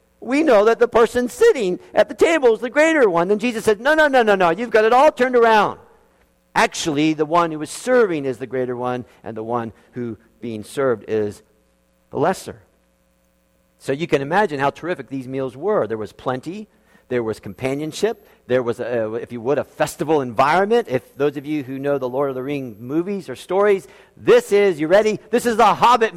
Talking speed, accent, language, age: 210 wpm, American, English, 50-69